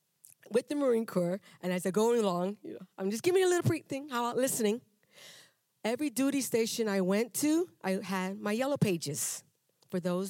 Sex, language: female, English